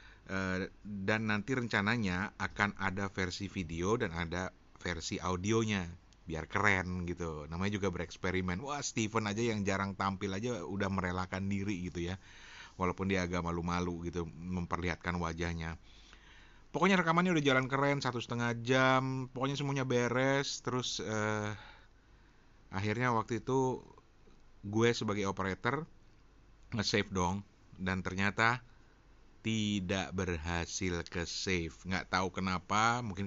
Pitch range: 90-110 Hz